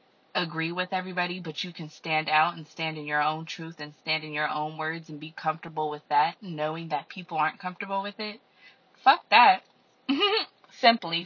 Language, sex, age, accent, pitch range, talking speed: English, female, 20-39, American, 155-205 Hz, 185 wpm